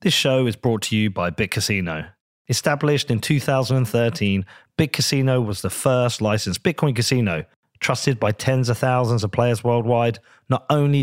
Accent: British